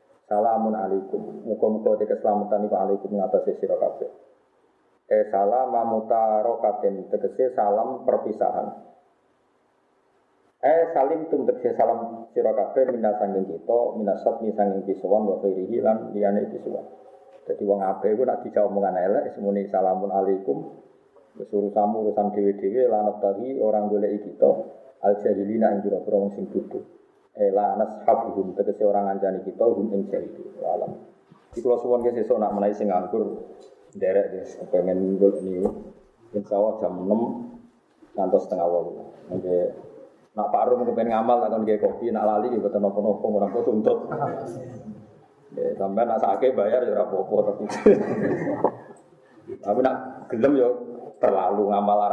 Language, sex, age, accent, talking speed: Indonesian, male, 20-39, native, 105 wpm